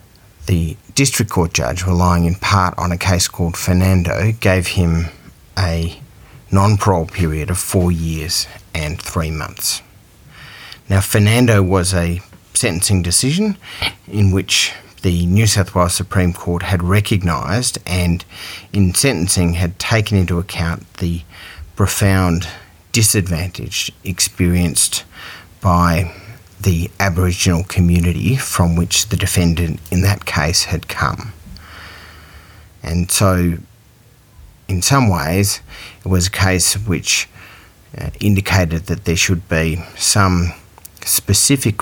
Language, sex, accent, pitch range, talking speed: English, male, Australian, 85-100 Hz, 115 wpm